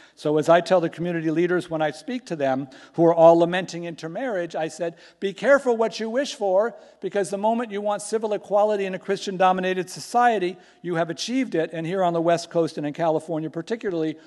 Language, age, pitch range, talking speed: English, 50-69, 140-175 Hz, 215 wpm